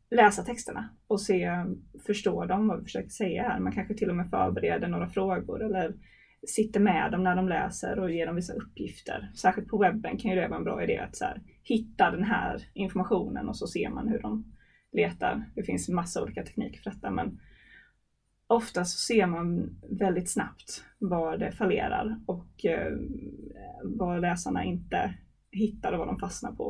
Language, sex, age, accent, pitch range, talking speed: Swedish, female, 20-39, native, 180-220 Hz, 185 wpm